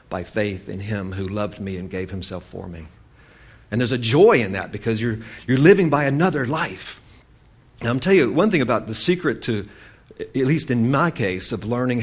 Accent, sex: American, male